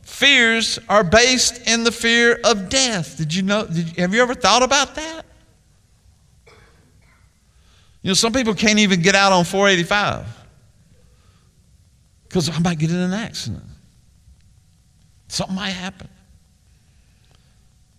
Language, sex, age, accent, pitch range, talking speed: English, male, 50-69, American, 155-225 Hz, 130 wpm